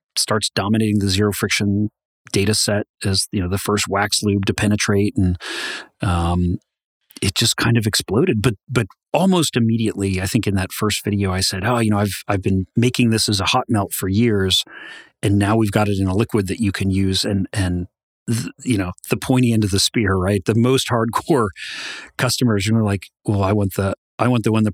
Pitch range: 95-115 Hz